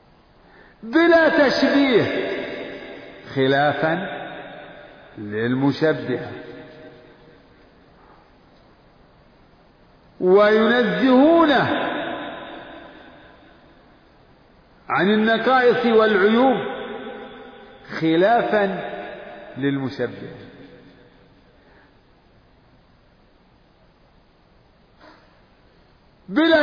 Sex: male